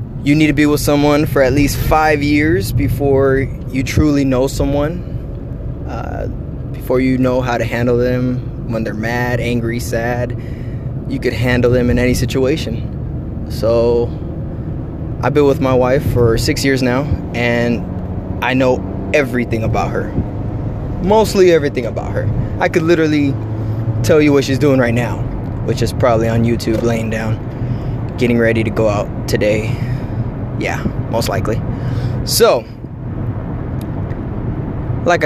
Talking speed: 145 wpm